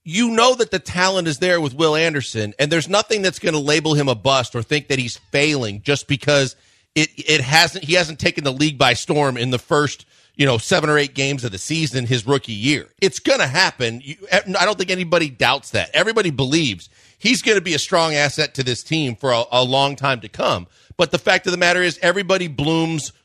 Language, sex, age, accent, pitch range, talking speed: English, male, 40-59, American, 135-175 Hz, 235 wpm